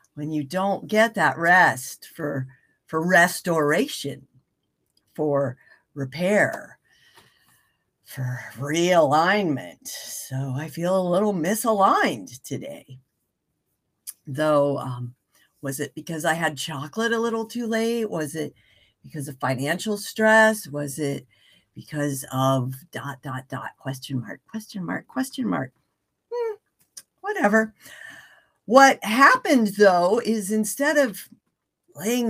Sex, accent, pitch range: female, American, 145-220 Hz